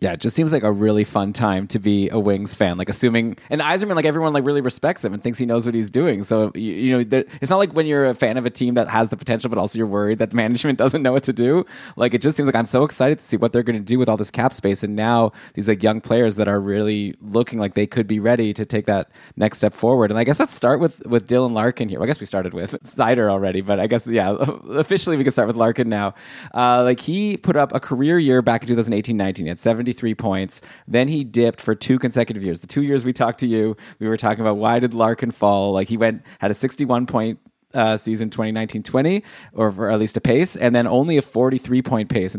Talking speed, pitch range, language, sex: 270 wpm, 105-125 Hz, English, male